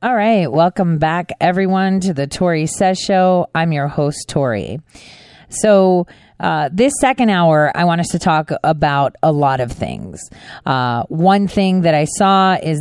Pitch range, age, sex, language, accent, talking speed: 140-185 Hz, 40-59, female, English, American, 170 wpm